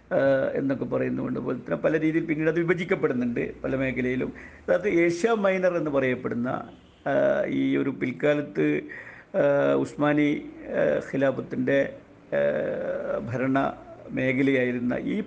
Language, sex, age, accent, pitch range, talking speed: Malayalam, male, 50-69, native, 125-150 Hz, 100 wpm